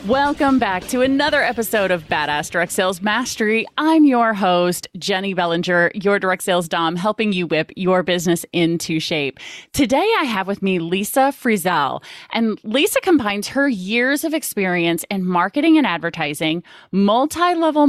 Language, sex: English, female